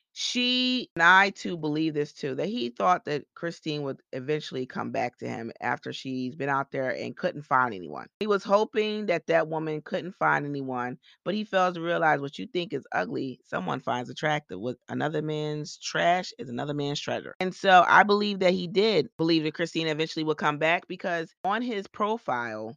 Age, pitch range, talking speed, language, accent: 30-49, 130-175 Hz, 200 wpm, English, American